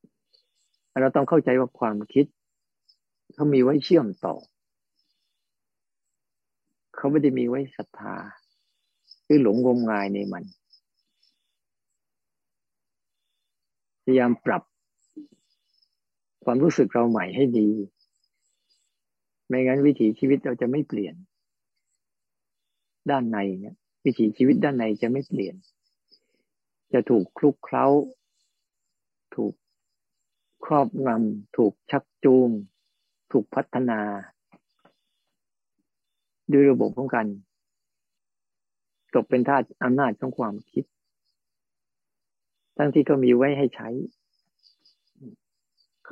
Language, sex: Thai, male